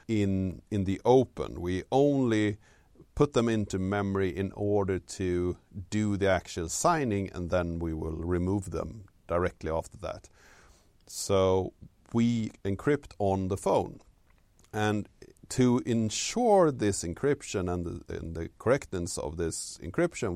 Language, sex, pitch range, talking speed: English, male, 90-110 Hz, 135 wpm